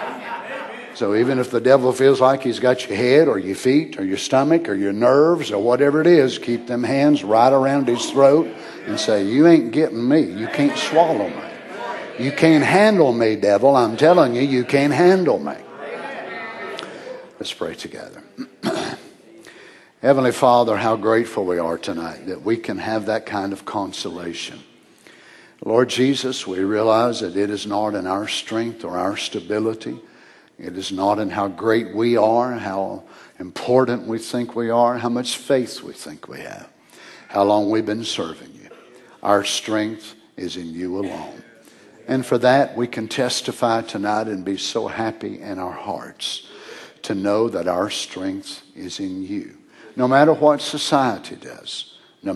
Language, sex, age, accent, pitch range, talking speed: English, male, 60-79, American, 105-135 Hz, 165 wpm